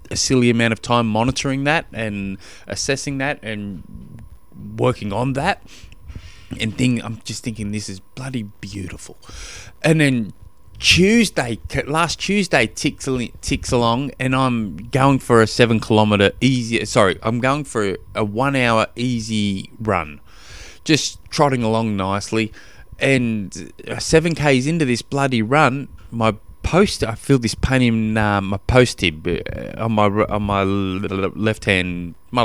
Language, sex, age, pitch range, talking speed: English, male, 20-39, 100-130 Hz, 140 wpm